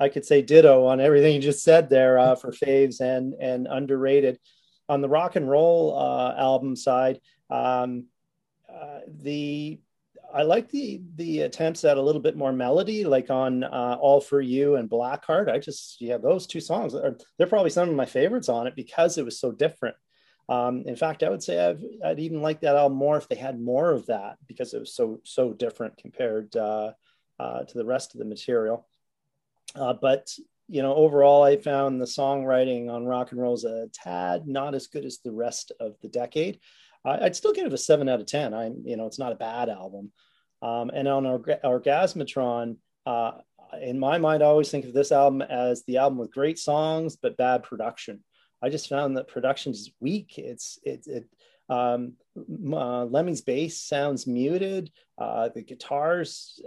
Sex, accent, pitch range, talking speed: male, American, 125-150 Hz, 195 wpm